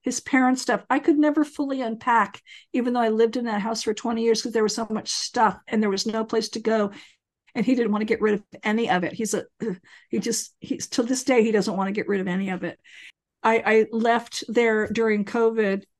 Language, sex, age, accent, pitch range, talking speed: English, female, 50-69, American, 215-255 Hz, 250 wpm